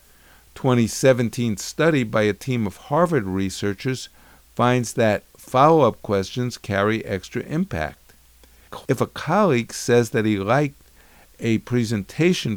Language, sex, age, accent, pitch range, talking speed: English, male, 50-69, American, 100-130 Hz, 115 wpm